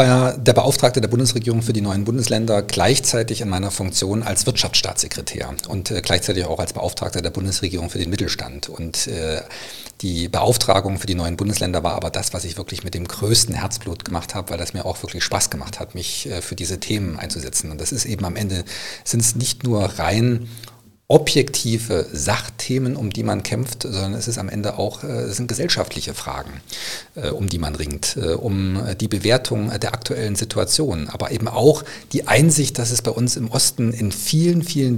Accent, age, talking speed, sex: German, 50-69, 190 wpm, male